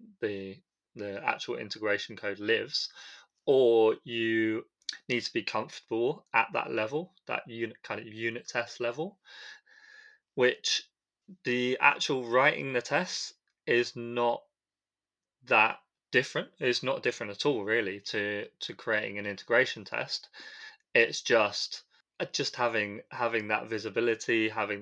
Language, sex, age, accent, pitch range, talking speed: English, male, 20-39, British, 100-125 Hz, 125 wpm